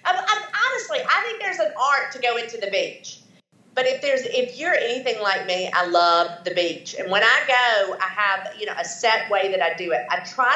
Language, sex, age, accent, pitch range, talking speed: English, female, 40-59, American, 190-275 Hz, 225 wpm